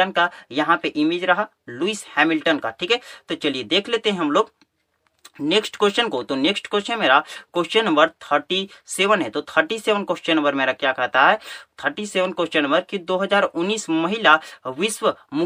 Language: Hindi